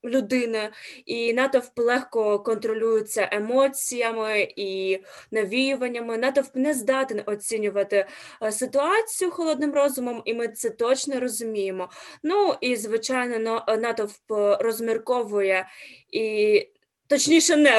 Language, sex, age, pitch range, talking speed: Ukrainian, female, 20-39, 220-280 Hz, 95 wpm